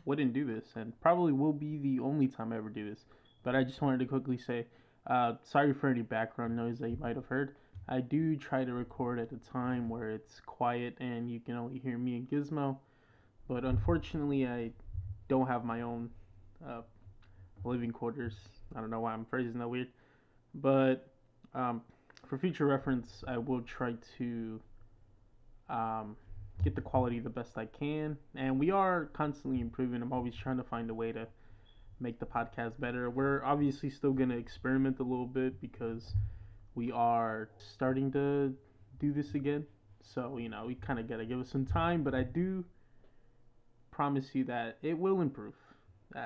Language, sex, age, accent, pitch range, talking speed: English, male, 20-39, American, 115-135 Hz, 185 wpm